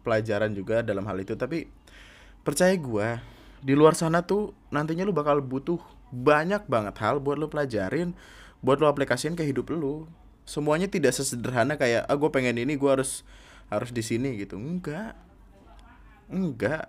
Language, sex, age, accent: Indonesian, male, 20-39, native